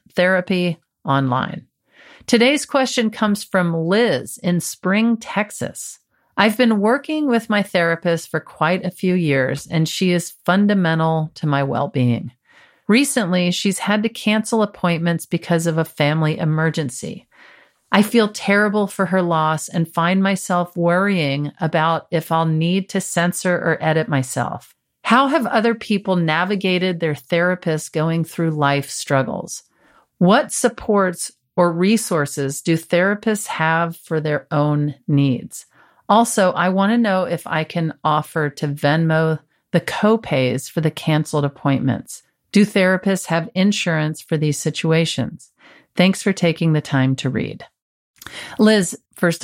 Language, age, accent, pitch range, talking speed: English, 40-59, American, 155-200 Hz, 140 wpm